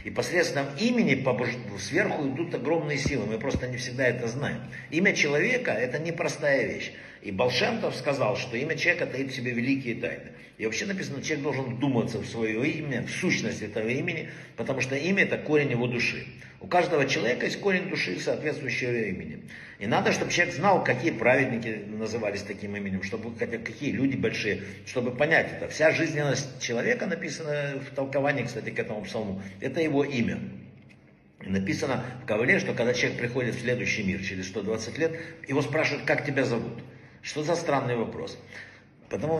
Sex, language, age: male, Russian, 60-79